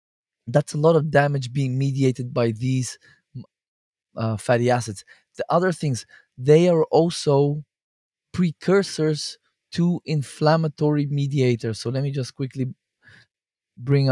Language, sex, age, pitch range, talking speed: English, male, 20-39, 120-150 Hz, 120 wpm